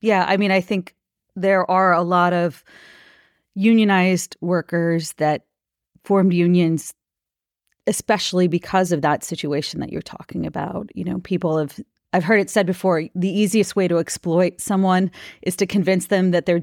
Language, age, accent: English, 30-49, American